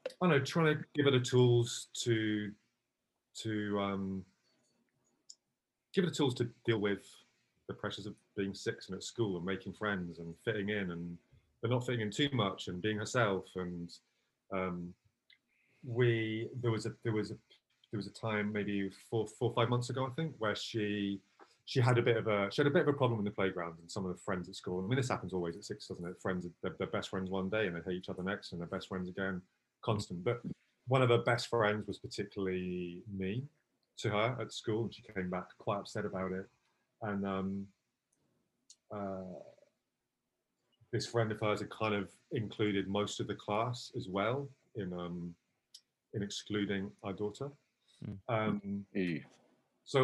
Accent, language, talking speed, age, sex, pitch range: British, English, 195 wpm, 30-49, male, 95-120 Hz